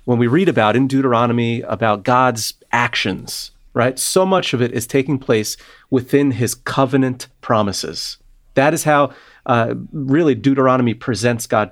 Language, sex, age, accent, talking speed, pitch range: English, male, 30-49, American, 150 wpm, 115-145 Hz